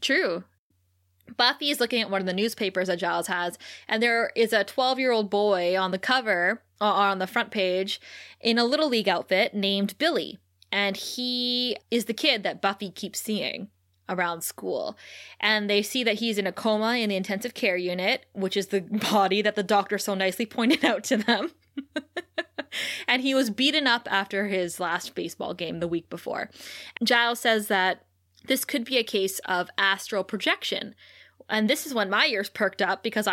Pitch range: 185-235 Hz